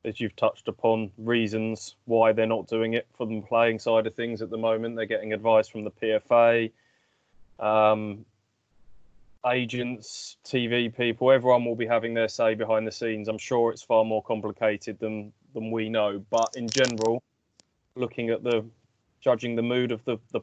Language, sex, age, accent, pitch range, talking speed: English, male, 20-39, British, 105-115 Hz, 175 wpm